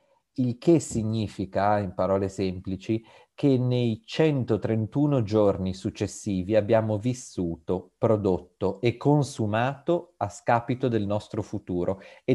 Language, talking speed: Italian, 105 wpm